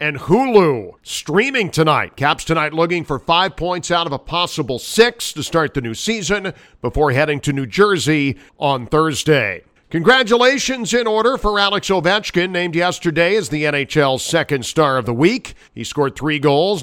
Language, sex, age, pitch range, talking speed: English, male, 50-69, 145-185 Hz, 170 wpm